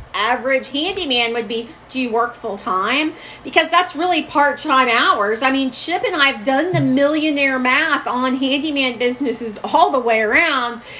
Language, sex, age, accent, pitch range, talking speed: English, female, 40-59, American, 255-320 Hz, 170 wpm